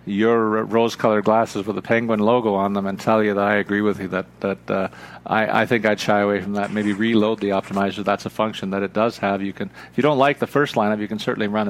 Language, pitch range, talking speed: English, 105-120 Hz, 265 wpm